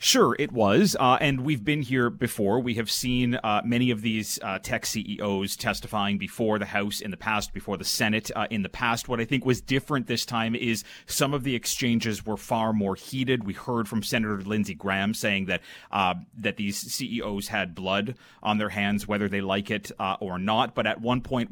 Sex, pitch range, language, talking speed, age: male, 100-120 Hz, English, 215 wpm, 30-49